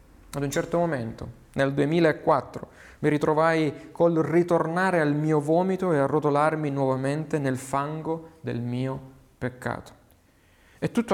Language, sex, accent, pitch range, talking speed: Italian, male, native, 140-185 Hz, 125 wpm